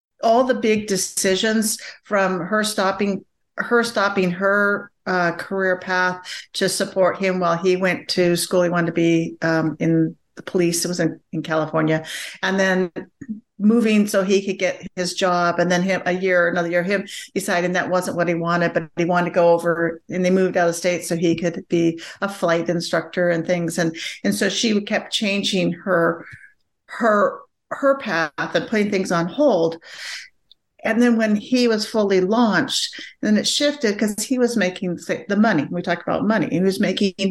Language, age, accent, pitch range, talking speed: English, 50-69, American, 175-205 Hz, 185 wpm